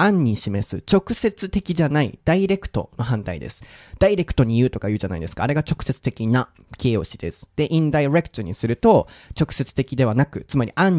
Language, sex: Japanese, male